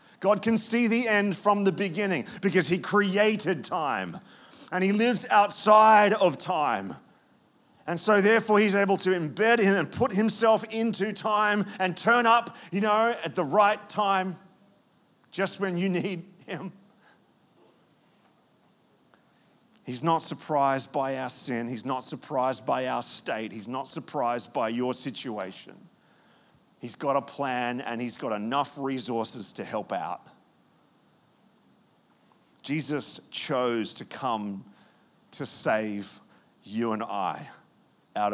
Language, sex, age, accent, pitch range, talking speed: English, male, 40-59, Australian, 130-205 Hz, 135 wpm